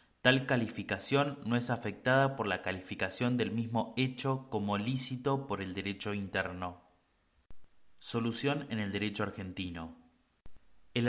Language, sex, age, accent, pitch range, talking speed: Spanish, male, 20-39, Argentinian, 100-125 Hz, 125 wpm